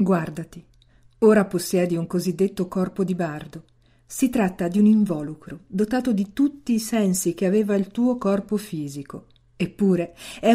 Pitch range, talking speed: 170-215 Hz, 150 wpm